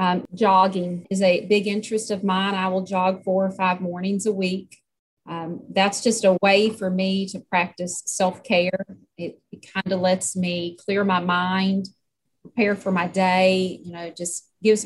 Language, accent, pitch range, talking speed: English, American, 180-215 Hz, 180 wpm